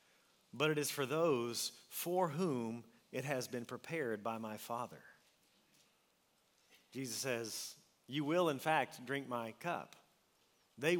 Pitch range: 125-155 Hz